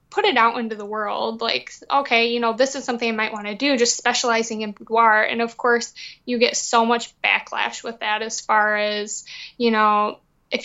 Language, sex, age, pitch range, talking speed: English, female, 20-39, 220-245 Hz, 215 wpm